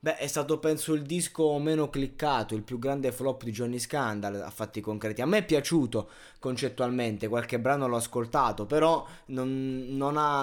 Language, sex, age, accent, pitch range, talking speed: Italian, male, 20-39, native, 125-160 Hz, 180 wpm